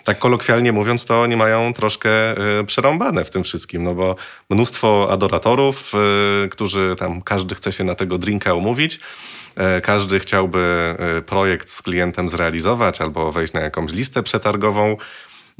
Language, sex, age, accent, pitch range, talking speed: Polish, male, 30-49, native, 90-110 Hz, 140 wpm